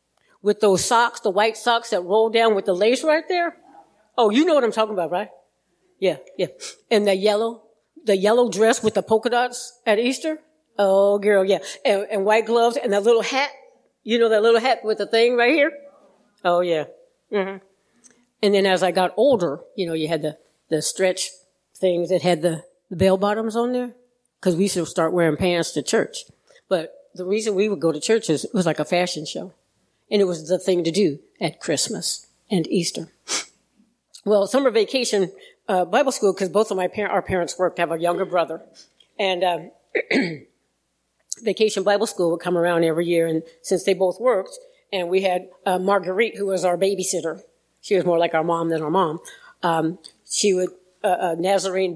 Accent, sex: American, female